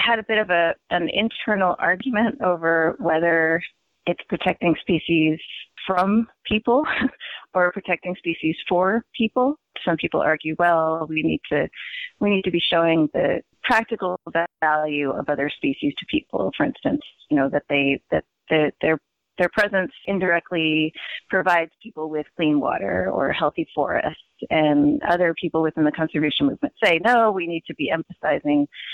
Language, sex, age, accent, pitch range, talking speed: English, female, 30-49, American, 155-225 Hz, 150 wpm